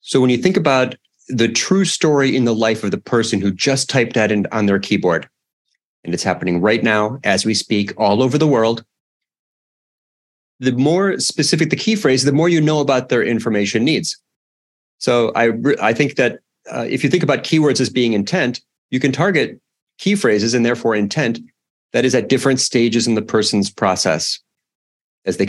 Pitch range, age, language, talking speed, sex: 105-155 Hz, 30-49, English, 190 wpm, male